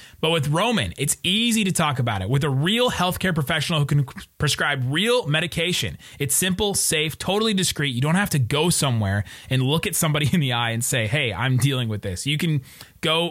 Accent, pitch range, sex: American, 135-180 Hz, male